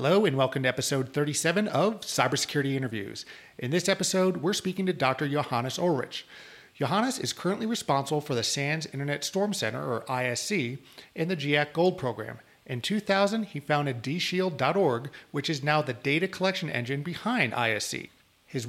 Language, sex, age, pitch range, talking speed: English, male, 40-59, 135-180 Hz, 160 wpm